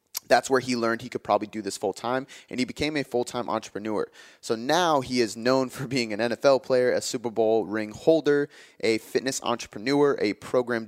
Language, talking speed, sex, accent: English, 200 wpm, male, American